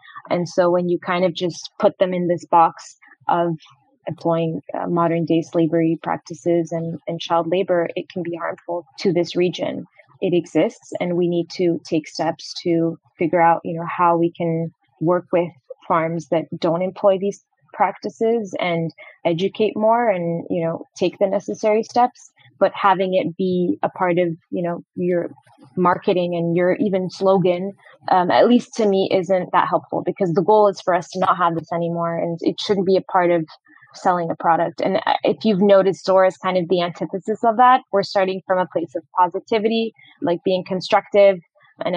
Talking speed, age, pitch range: 185 wpm, 20-39, 170-190 Hz